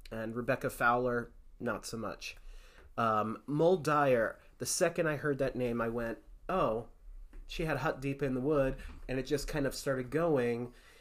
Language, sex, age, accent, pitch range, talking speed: English, male, 30-49, American, 115-145 Hz, 180 wpm